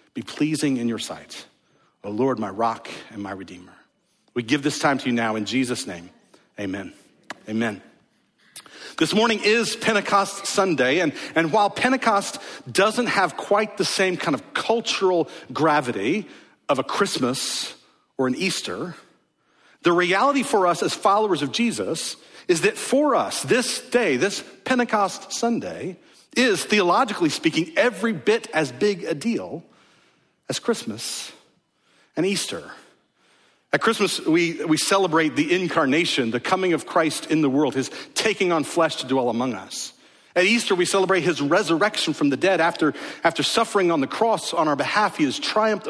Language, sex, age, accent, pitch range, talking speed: English, male, 50-69, American, 150-225 Hz, 160 wpm